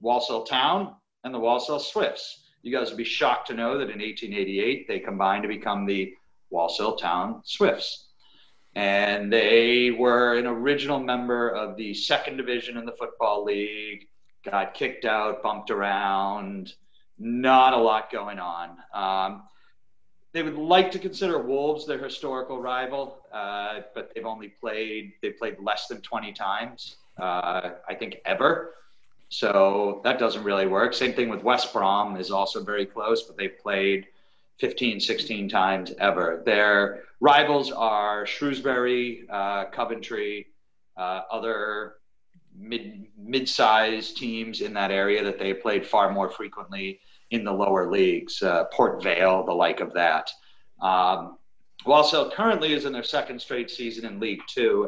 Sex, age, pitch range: male, 40-59, 100-130 Hz